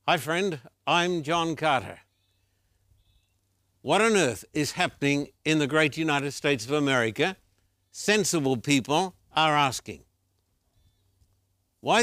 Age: 60-79